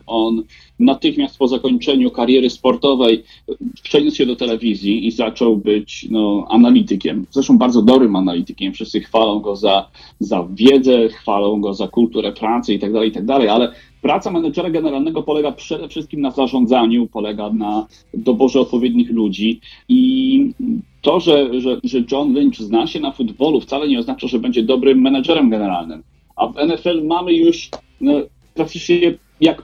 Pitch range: 115-195 Hz